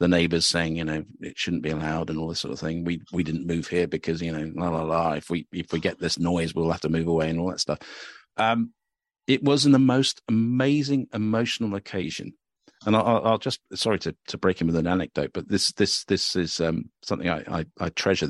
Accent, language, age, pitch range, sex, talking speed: British, English, 50-69, 85-115 Hz, male, 240 wpm